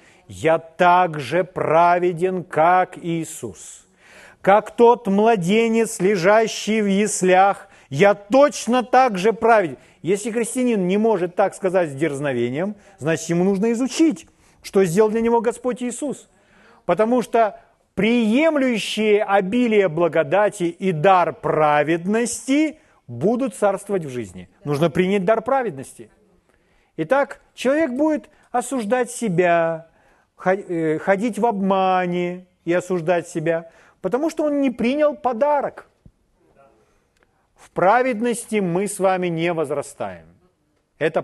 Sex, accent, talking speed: male, native, 110 wpm